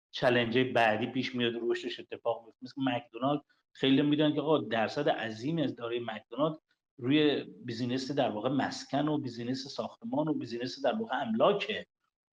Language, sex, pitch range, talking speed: Persian, male, 130-165 Hz, 145 wpm